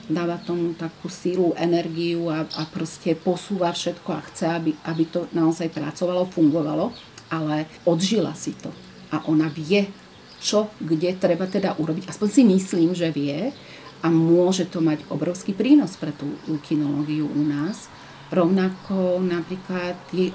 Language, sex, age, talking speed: Slovak, female, 40-59, 145 wpm